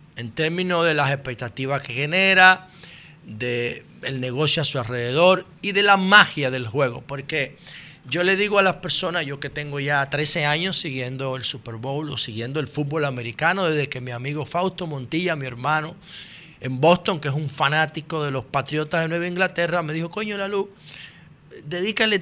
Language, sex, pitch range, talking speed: Spanish, male, 140-180 Hz, 180 wpm